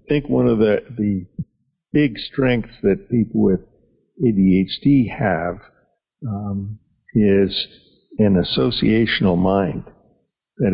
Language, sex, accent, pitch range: English, male, American, 95-120 Hz